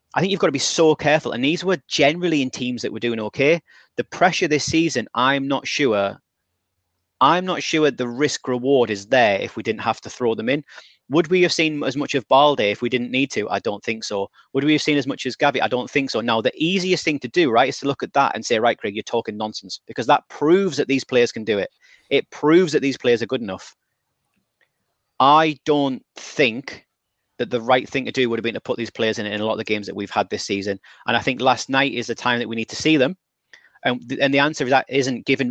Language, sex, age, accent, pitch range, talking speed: English, male, 30-49, British, 115-145 Hz, 265 wpm